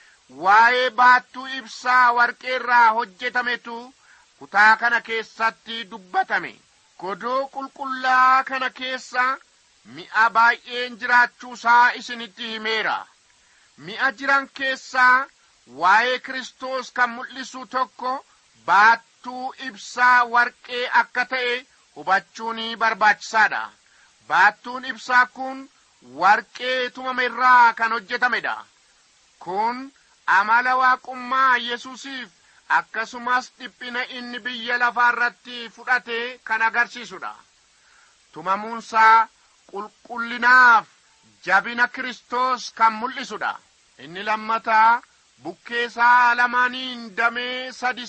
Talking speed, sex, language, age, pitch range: 75 wpm, male, English, 50-69, 230-255 Hz